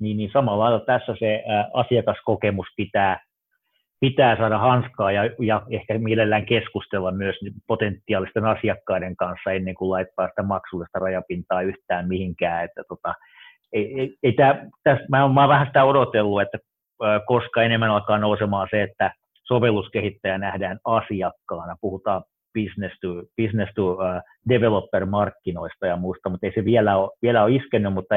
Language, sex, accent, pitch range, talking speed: Finnish, male, native, 95-115 Hz, 145 wpm